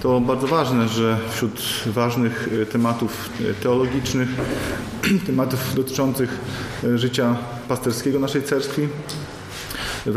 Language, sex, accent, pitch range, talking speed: Polish, male, native, 120-135 Hz, 90 wpm